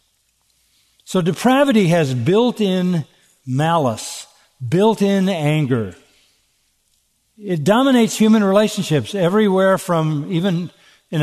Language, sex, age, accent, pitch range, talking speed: English, male, 60-79, American, 130-165 Hz, 80 wpm